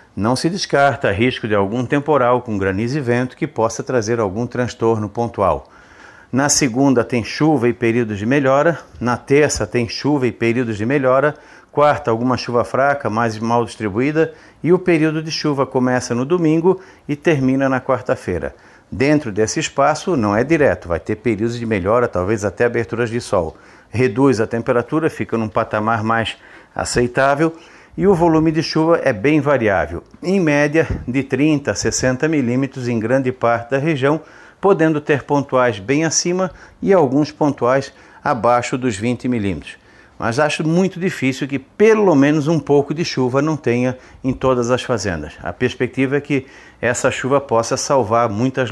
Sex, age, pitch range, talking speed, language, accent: male, 50-69, 115-145 Hz, 165 wpm, Portuguese, Brazilian